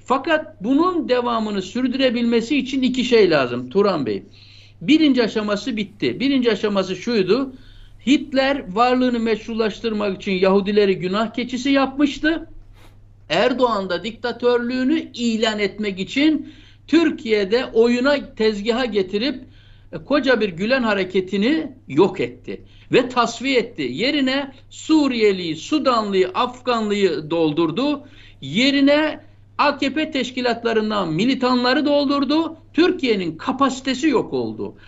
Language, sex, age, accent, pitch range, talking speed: Turkish, male, 60-79, native, 205-280 Hz, 100 wpm